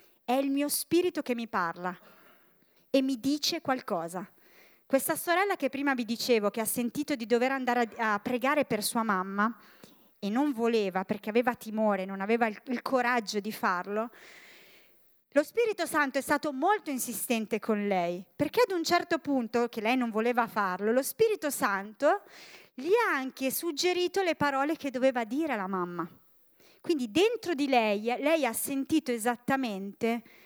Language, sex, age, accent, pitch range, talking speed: Italian, female, 30-49, native, 220-275 Hz, 160 wpm